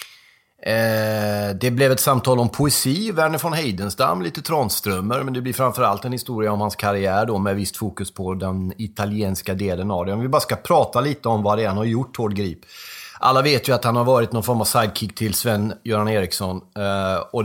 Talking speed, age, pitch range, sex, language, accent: 215 wpm, 30-49, 100-120 Hz, male, Swedish, native